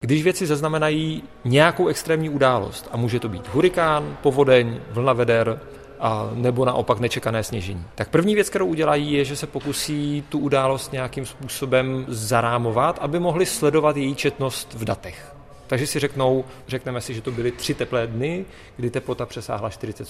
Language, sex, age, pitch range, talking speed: Czech, male, 40-59, 120-150 Hz, 165 wpm